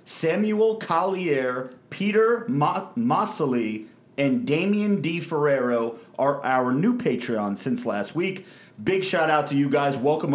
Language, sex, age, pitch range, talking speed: English, male, 30-49, 120-160 Hz, 135 wpm